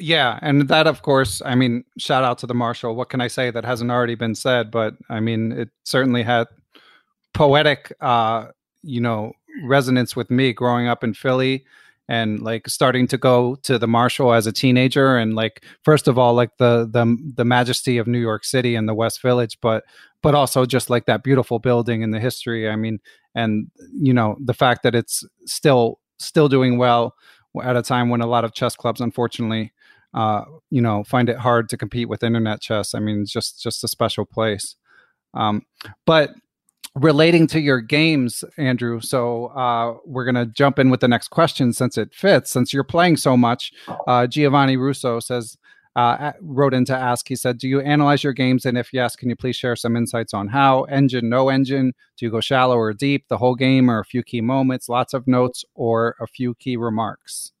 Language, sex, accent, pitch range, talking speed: English, male, American, 115-130 Hz, 205 wpm